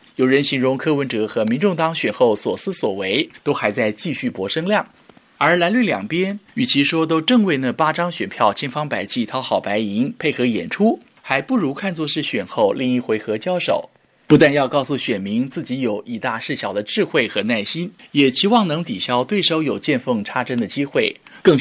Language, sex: Chinese, male